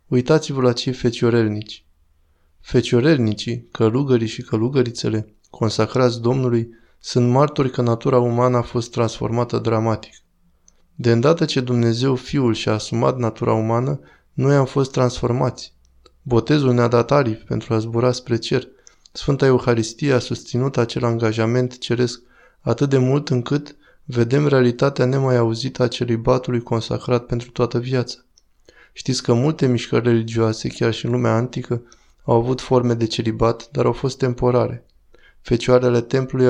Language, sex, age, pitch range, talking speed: Romanian, male, 20-39, 115-130 Hz, 135 wpm